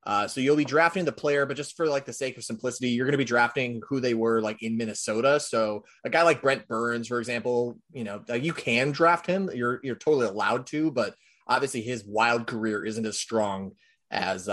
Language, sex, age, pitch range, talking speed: English, male, 30-49, 110-130 Hz, 225 wpm